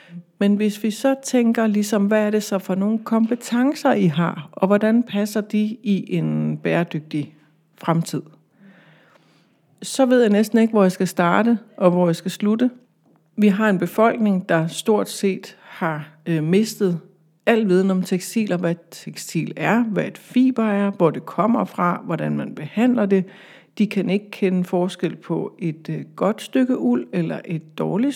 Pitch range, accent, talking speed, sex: 170-220 Hz, native, 165 wpm, female